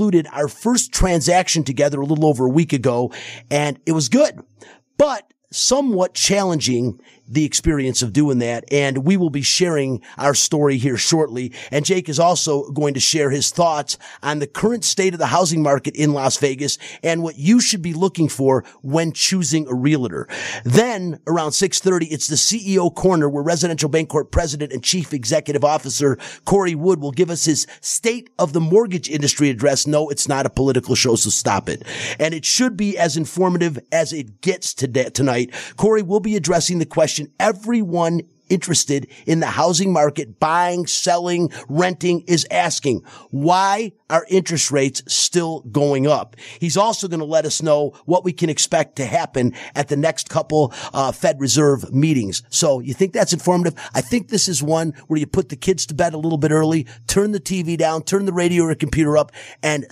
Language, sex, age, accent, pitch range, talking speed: English, male, 40-59, American, 145-180 Hz, 190 wpm